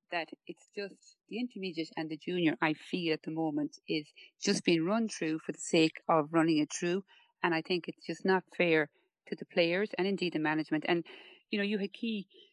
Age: 30-49